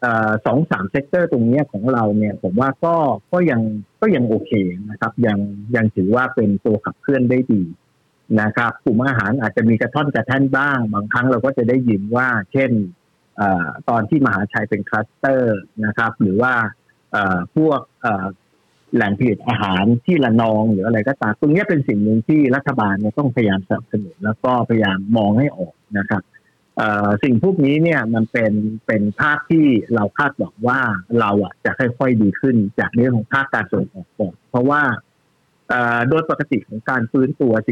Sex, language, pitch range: male, Thai, 105-130 Hz